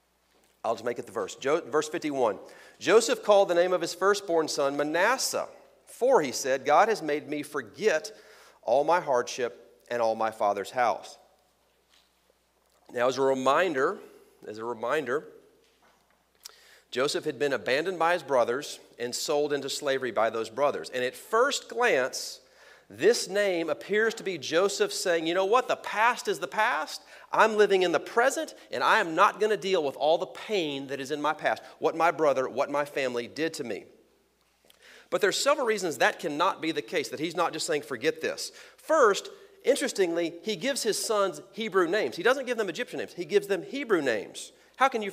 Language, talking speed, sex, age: English, 185 wpm, male, 40-59